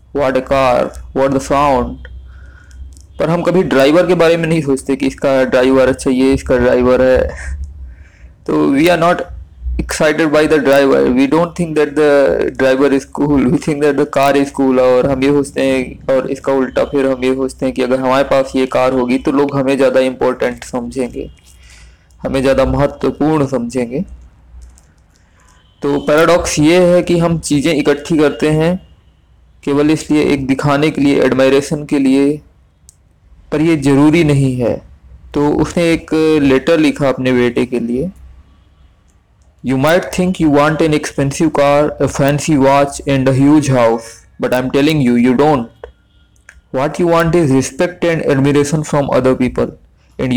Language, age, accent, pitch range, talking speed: Hindi, 20-39, native, 120-150 Hz, 170 wpm